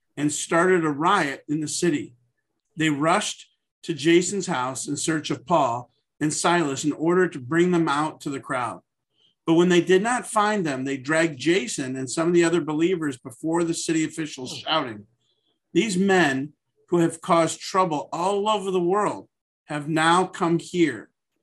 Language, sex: English, male